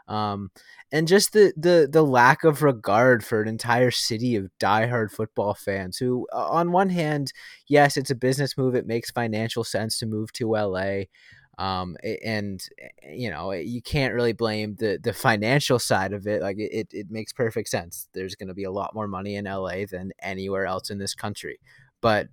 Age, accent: 20-39, American